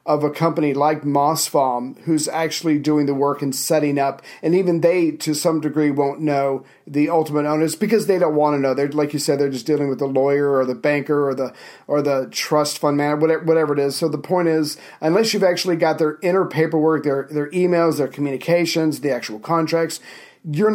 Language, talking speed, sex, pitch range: English, 215 wpm, male, 145-170 Hz